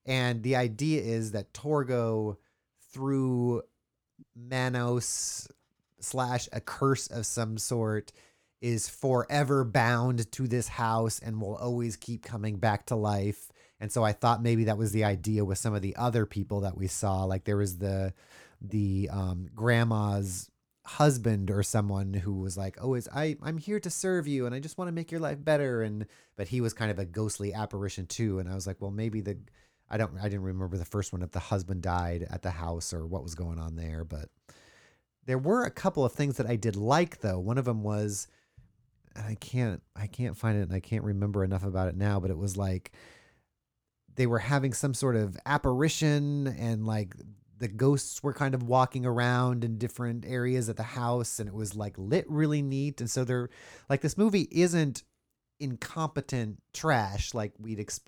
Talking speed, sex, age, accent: 195 wpm, male, 30-49, American